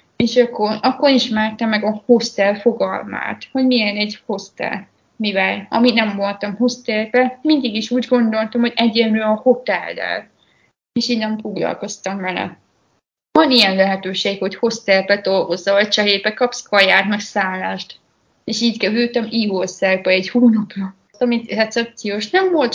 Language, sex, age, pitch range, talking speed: Hungarian, female, 20-39, 200-235 Hz, 135 wpm